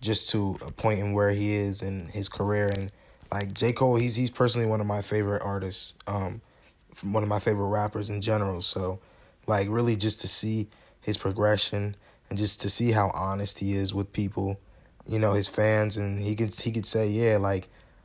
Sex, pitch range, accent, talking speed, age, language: male, 100-110 Hz, American, 205 wpm, 20-39, English